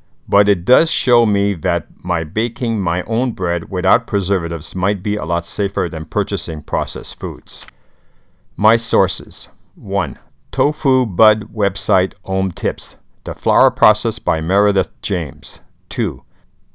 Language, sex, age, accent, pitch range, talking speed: English, male, 60-79, American, 95-110 Hz, 135 wpm